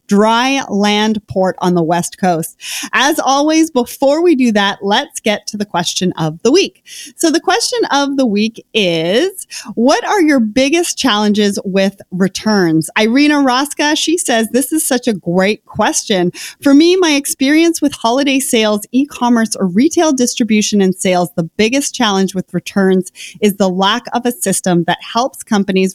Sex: female